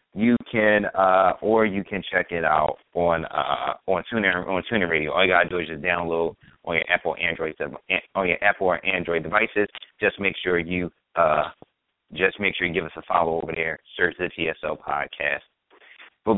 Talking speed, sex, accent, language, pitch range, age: 195 wpm, male, American, English, 95-135 Hz, 30-49